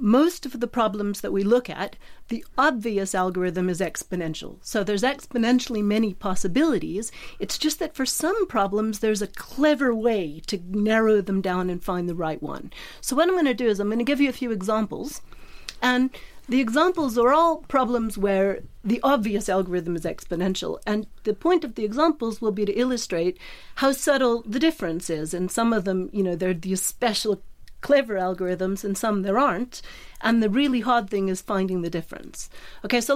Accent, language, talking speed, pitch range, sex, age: American, English, 190 wpm, 185-250 Hz, female, 40-59